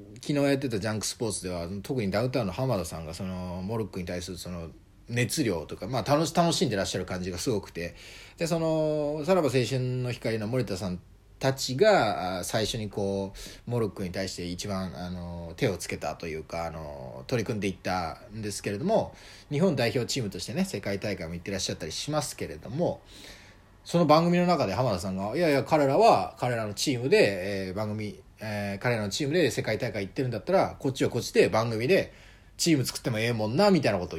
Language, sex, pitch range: Japanese, male, 95-140 Hz